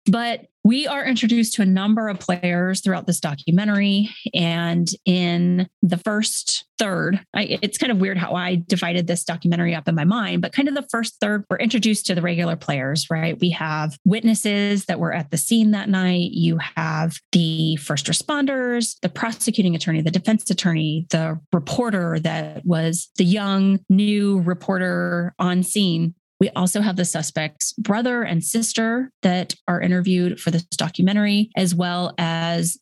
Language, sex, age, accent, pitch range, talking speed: English, female, 30-49, American, 170-210 Hz, 165 wpm